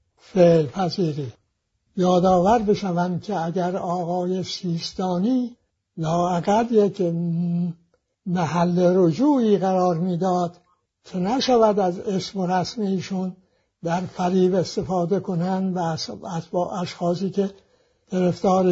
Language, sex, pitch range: English, male, 180-210 Hz